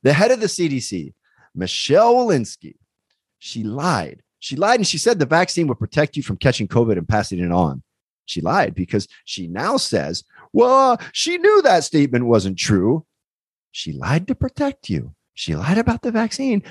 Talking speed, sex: 175 wpm, male